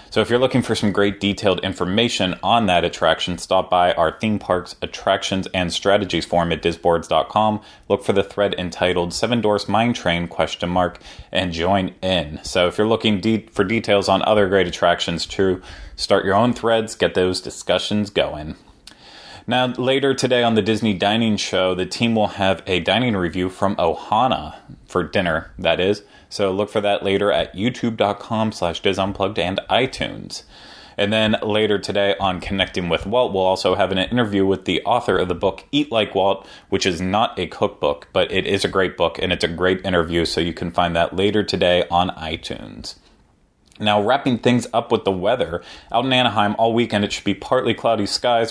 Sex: male